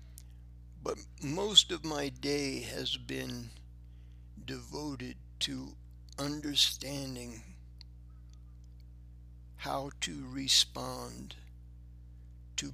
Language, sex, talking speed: English, male, 65 wpm